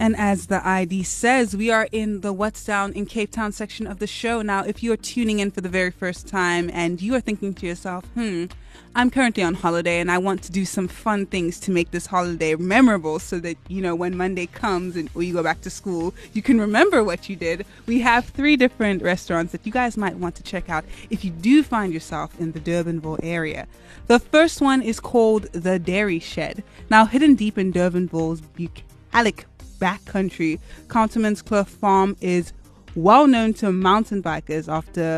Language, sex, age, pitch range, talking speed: English, female, 20-39, 170-215 Hz, 200 wpm